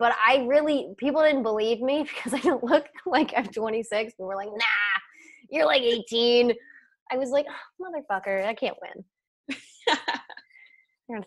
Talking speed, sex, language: 165 wpm, female, English